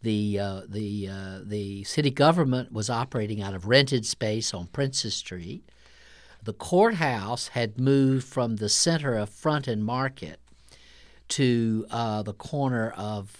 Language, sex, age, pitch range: English, male, 60-79, 105-135 Hz